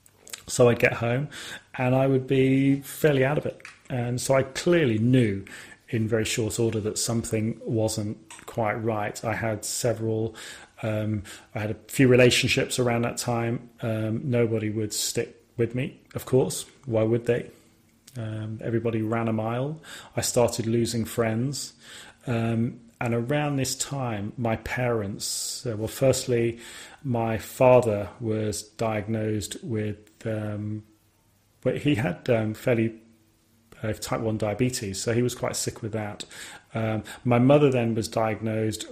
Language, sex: English, male